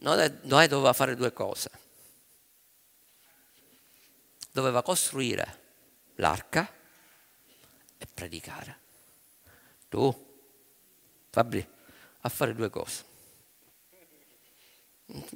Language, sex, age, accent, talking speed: Italian, male, 50-69, native, 70 wpm